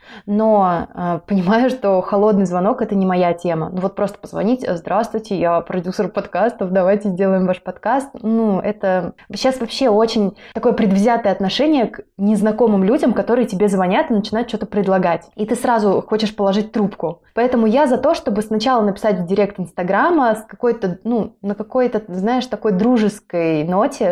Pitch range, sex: 185-225 Hz, female